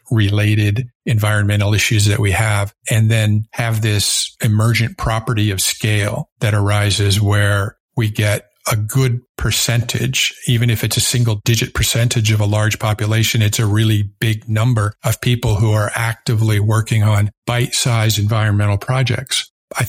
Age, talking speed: 50-69, 150 wpm